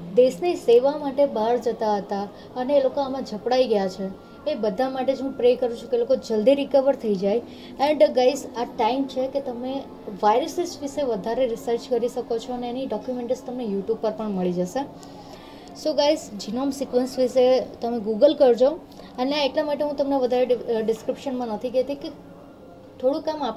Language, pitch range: Gujarati, 225-270 Hz